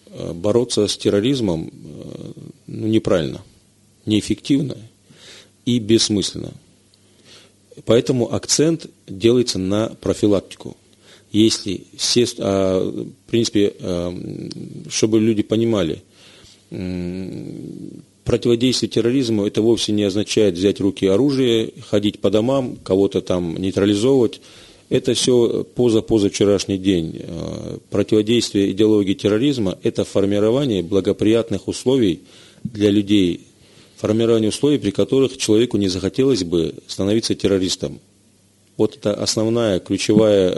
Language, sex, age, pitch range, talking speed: Russian, male, 40-59, 100-115 Hz, 95 wpm